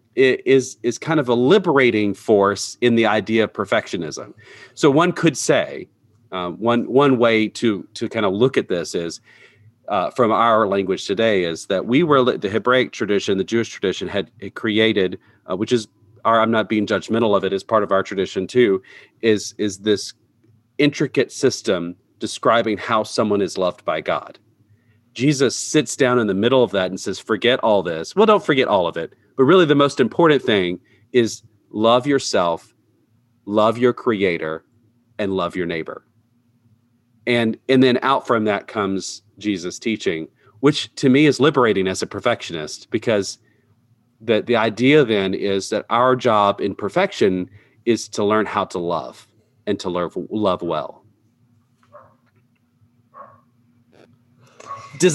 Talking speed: 160 wpm